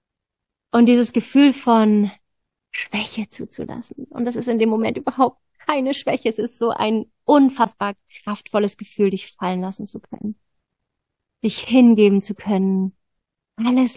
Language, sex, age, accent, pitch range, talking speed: German, female, 30-49, German, 195-230 Hz, 135 wpm